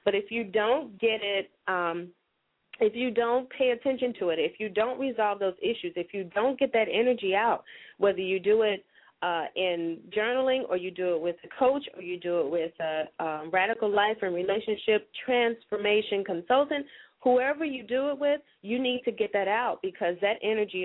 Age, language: 30-49, English